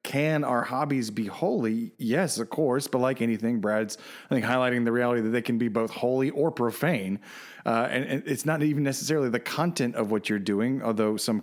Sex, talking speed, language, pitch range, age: male, 210 wpm, English, 115-145 Hz, 30-49